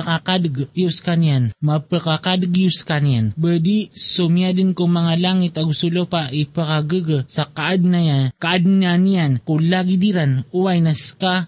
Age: 20-39